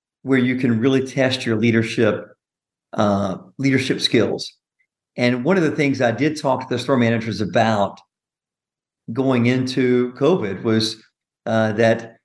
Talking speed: 140 wpm